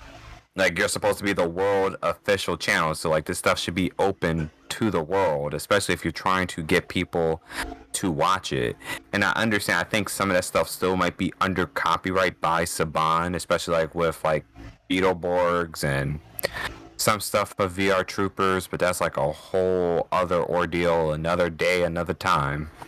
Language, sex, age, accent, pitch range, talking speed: English, male, 30-49, American, 80-95 Hz, 175 wpm